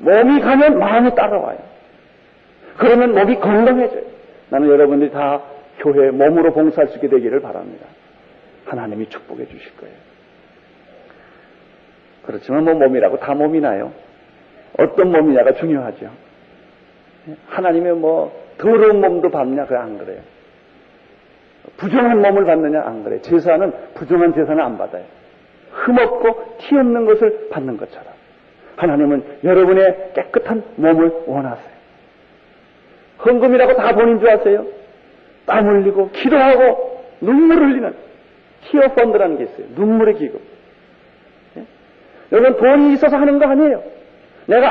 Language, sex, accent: Korean, male, native